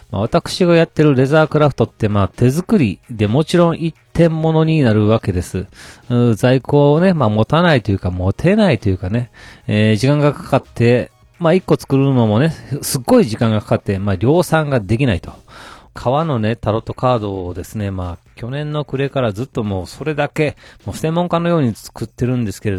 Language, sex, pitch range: Japanese, male, 100-145 Hz